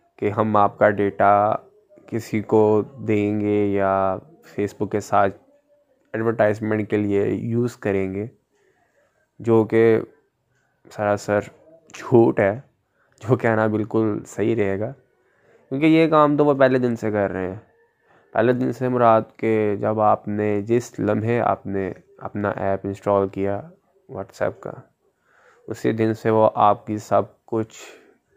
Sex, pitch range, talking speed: male, 105-120 Hz, 145 wpm